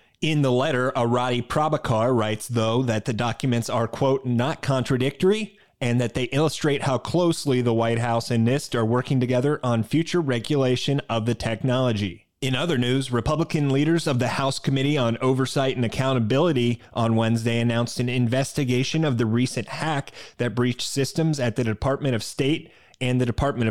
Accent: American